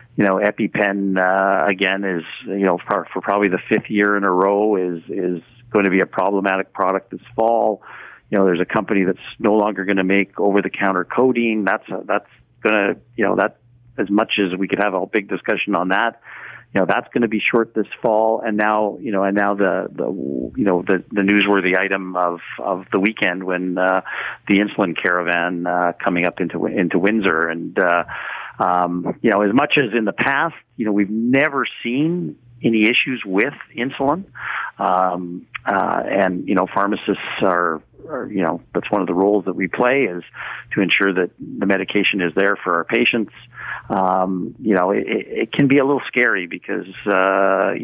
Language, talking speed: English, 195 wpm